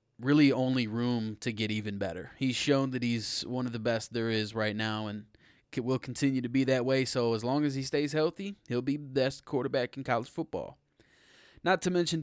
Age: 20-39